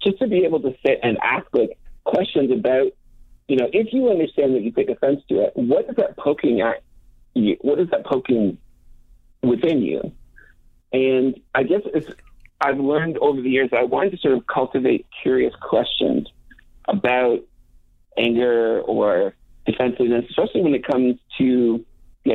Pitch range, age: 115-140 Hz, 50-69